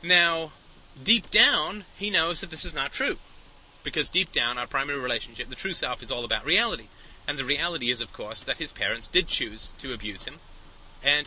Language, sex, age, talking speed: English, male, 30-49, 200 wpm